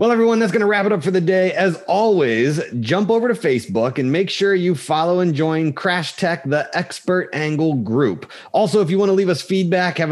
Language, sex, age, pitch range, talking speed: English, male, 30-49, 130-190 Hz, 230 wpm